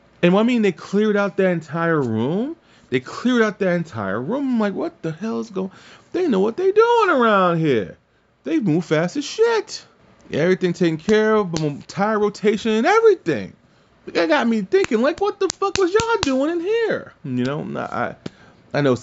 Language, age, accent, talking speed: English, 30-49, American, 200 wpm